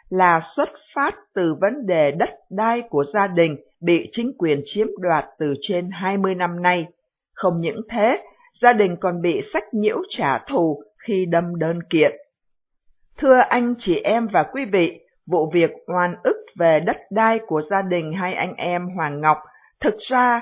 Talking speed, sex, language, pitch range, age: 175 wpm, female, Vietnamese, 170-235 Hz, 50-69